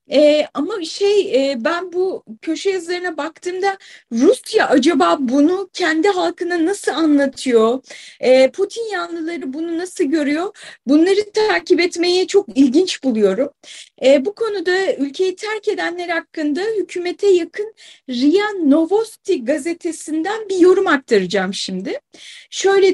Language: Turkish